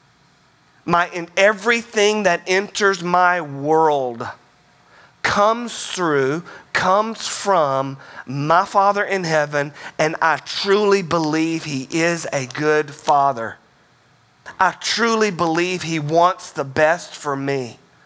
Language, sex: English, male